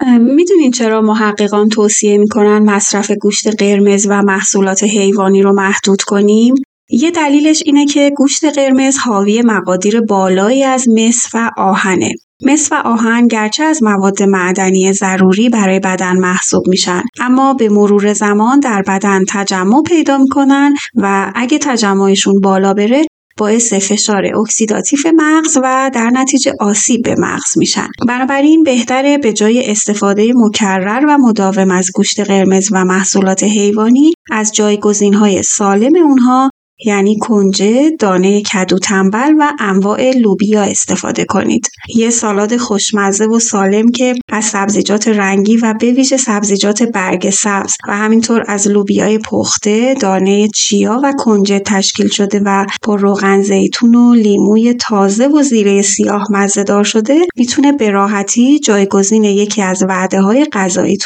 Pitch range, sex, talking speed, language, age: 200-250 Hz, female, 135 wpm, Persian, 30-49